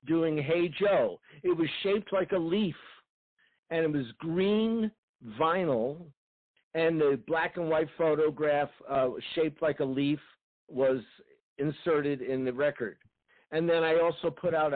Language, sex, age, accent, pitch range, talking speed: English, male, 60-79, American, 140-190 Hz, 145 wpm